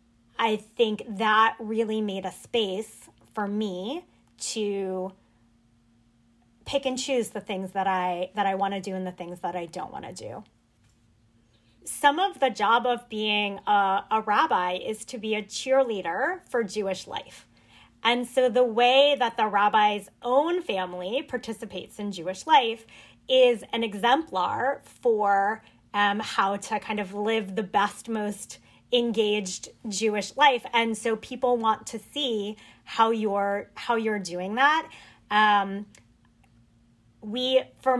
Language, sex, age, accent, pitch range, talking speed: English, female, 20-39, American, 200-245 Hz, 145 wpm